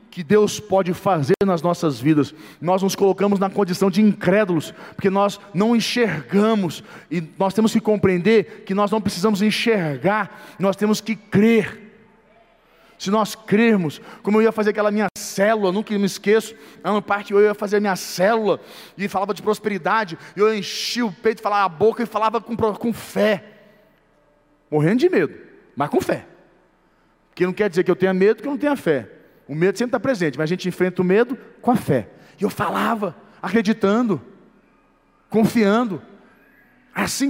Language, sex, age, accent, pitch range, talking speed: Portuguese, male, 40-59, Brazilian, 185-220 Hz, 175 wpm